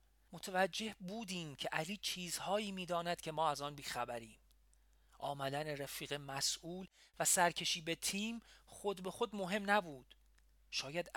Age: 40-59